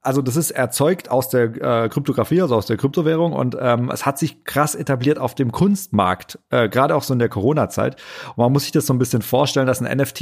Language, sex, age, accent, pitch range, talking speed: German, male, 40-59, German, 115-140 Hz, 235 wpm